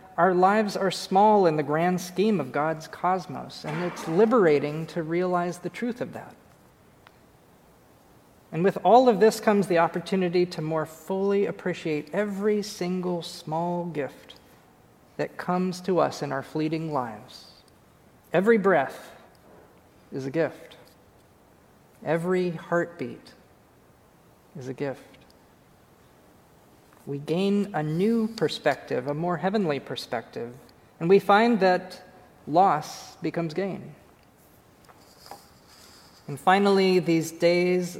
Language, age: English, 40-59